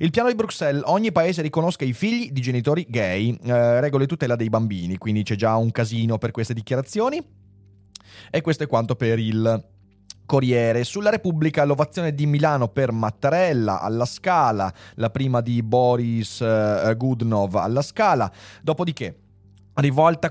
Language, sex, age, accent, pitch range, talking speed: Italian, male, 30-49, native, 110-155 Hz, 150 wpm